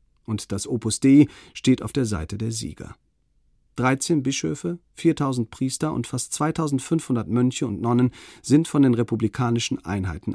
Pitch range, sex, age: 110-140 Hz, male, 40-59